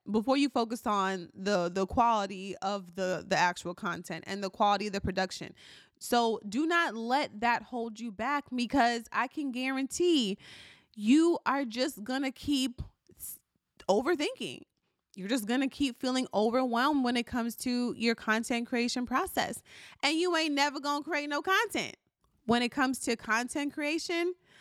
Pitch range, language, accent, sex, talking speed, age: 225-280 Hz, English, American, female, 155 wpm, 20-39